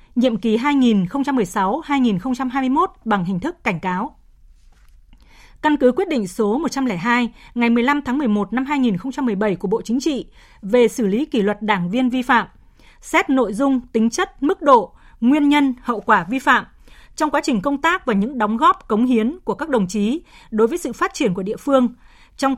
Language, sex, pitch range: Vietnamese, female, 220-290 Hz